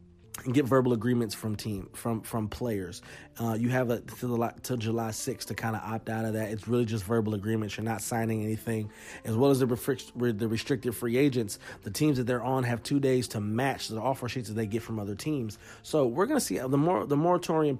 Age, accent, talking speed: 30-49, American, 240 wpm